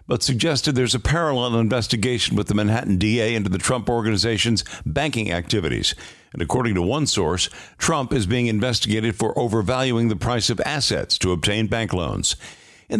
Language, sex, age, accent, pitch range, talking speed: English, male, 60-79, American, 95-125 Hz, 165 wpm